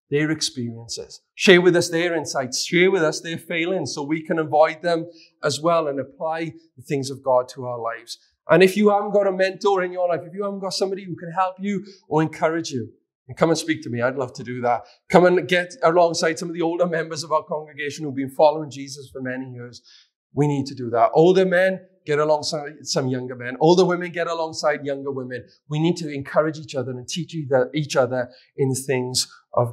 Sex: male